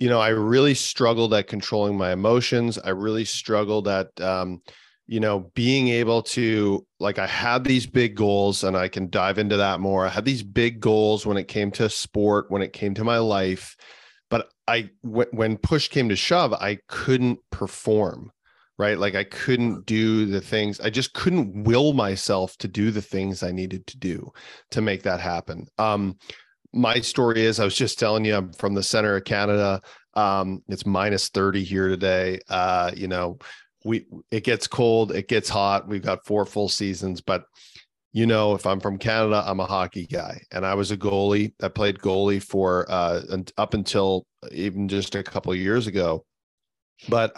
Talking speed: 190 wpm